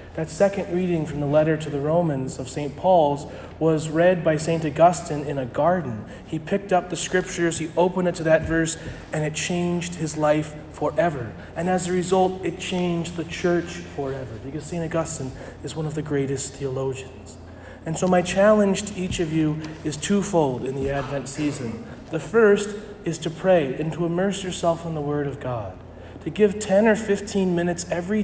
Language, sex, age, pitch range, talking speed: English, male, 30-49, 140-175 Hz, 190 wpm